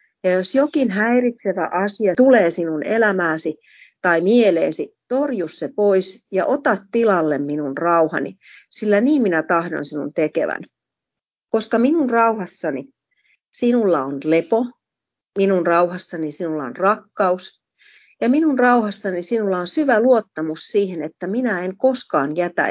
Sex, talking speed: female, 125 wpm